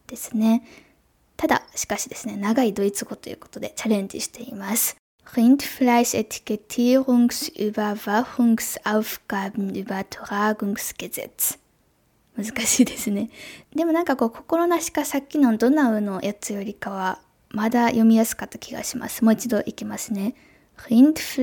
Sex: female